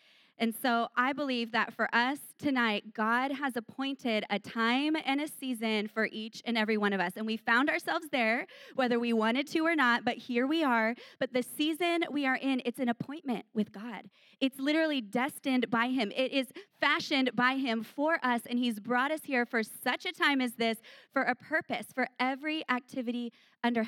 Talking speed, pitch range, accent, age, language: 200 wpm, 215-270 Hz, American, 20-39, English